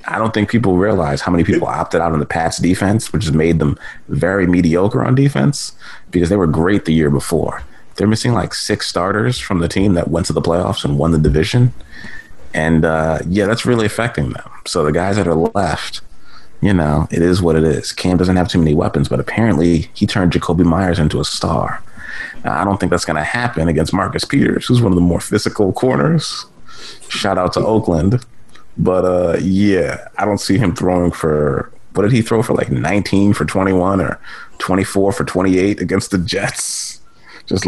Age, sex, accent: 30-49, male, American